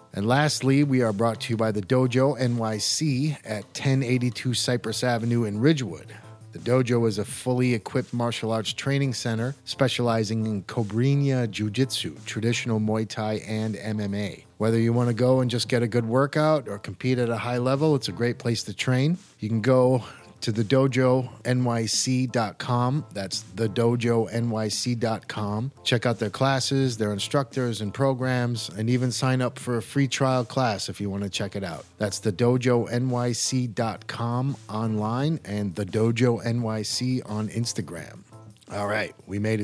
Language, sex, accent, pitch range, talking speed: English, male, American, 110-130 Hz, 160 wpm